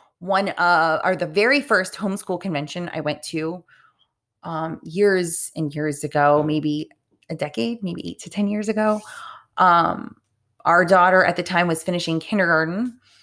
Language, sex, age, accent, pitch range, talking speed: English, female, 30-49, American, 155-185 Hz, 155 wpm